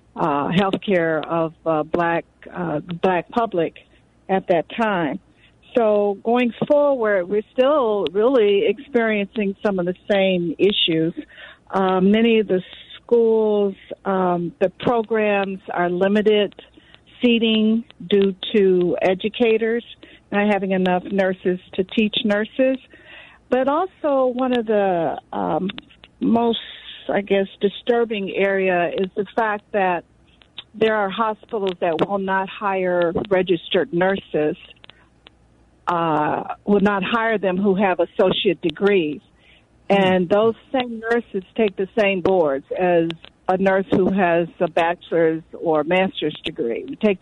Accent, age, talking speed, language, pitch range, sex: American, 60-79, 125 wpm, English, 180-230 Hz, female